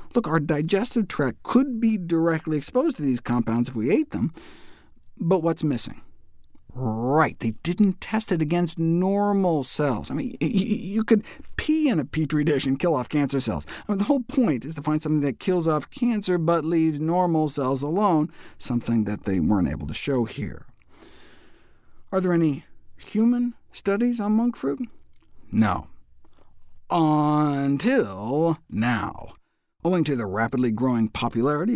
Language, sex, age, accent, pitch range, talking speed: English, male, 50-69, American, 135-200 Hz, 155 wpm